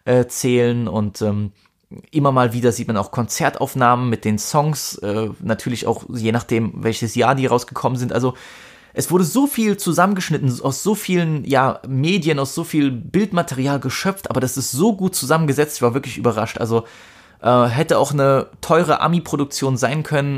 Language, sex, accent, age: German, male, German, 20-39